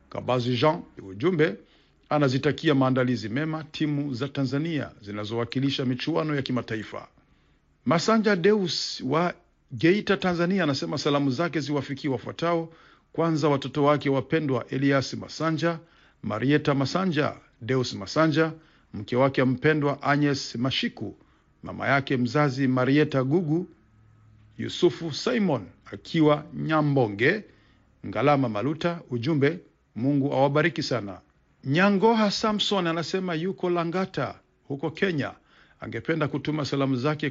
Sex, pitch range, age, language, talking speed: male, 130-160 Hz, 50-69, Swahili, 105 wpm